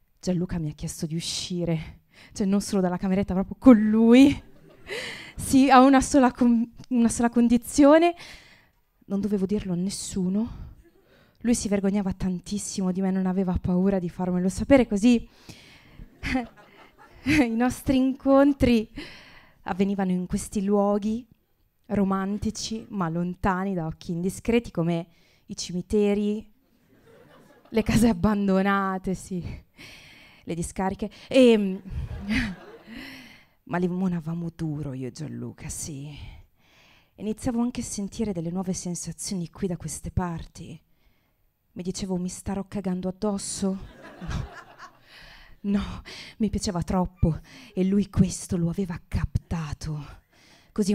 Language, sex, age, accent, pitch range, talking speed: Italian, female, 20-39, native, 175-220 Hz, 115 wpm